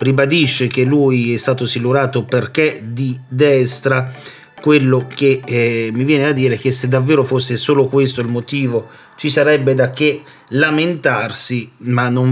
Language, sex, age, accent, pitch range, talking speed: Italian, male, 40-59, native, 120-150 Hz, 155 wpm